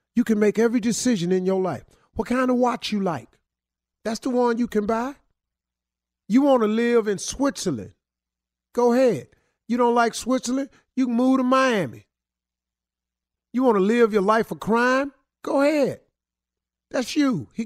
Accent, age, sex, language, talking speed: American, 40-59, male, English, 170 wpm